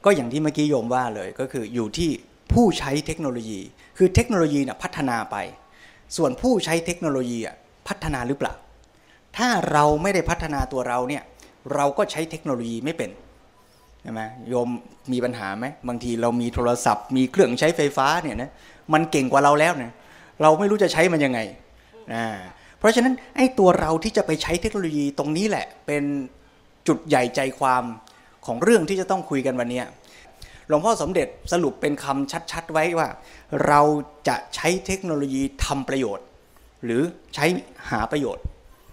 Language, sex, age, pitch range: Thai, male, 20-39, 125-170 Hz